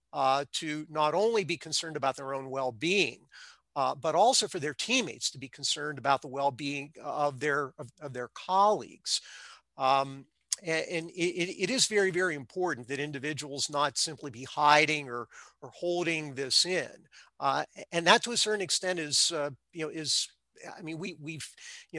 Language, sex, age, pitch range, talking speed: English, male, 50-69, 140-175 Hz, 175 wpm